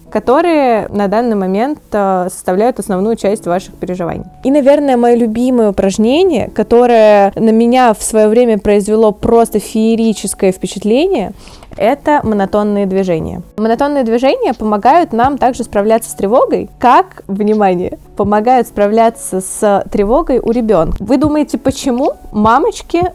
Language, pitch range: Russian, 195-245 Hz